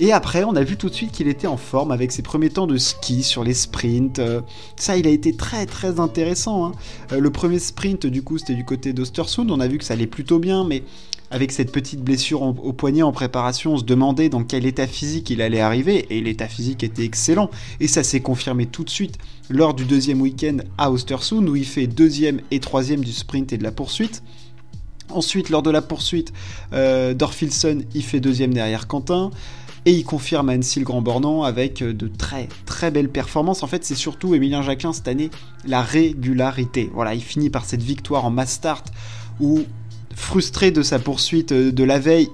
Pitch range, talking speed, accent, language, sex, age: 125-155 Hz, 210 wpm, French, French, male, 20-39